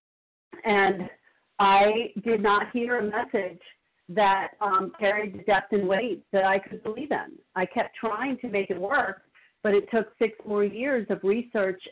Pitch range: 195-220 Hz